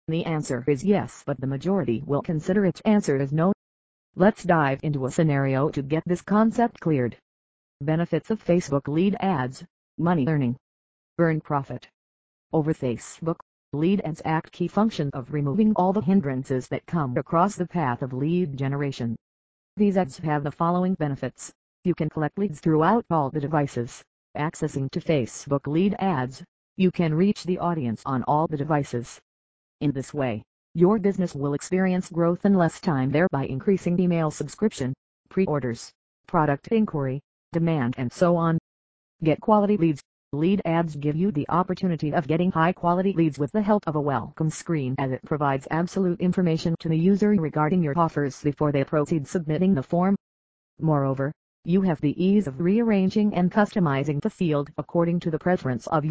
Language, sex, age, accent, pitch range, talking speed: English, female, 40-59, American, 140-180 Hz, 165 wpm